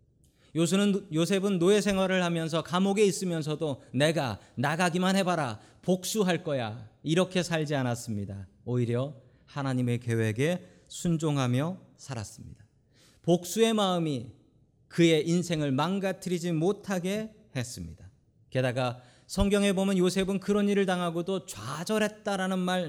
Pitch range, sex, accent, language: 125-180 Hz, male, native, Korean